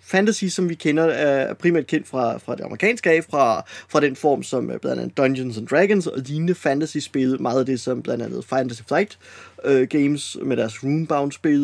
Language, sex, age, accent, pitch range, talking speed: Danish, male, 20-39, native, 140-190 Hz, 190 wpm